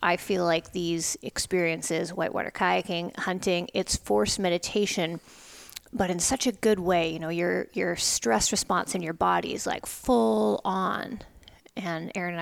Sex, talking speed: female, 160 wpm